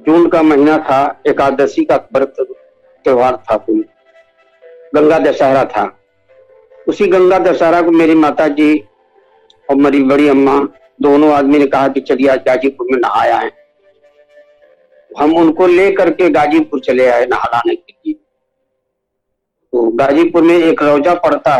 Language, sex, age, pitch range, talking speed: Hindi, male, 50-69, 140-220 Hz, 135 wpm